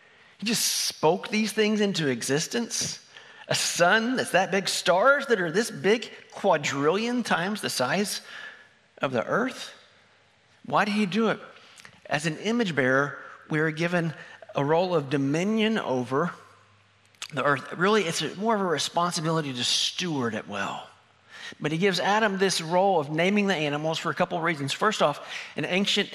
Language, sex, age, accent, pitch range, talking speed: English, male, 40-59, American, 150-205 Hz, 165 wpm